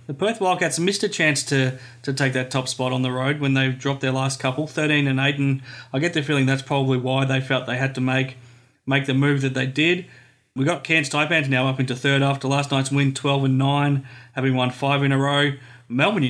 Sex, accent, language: male, Australian, English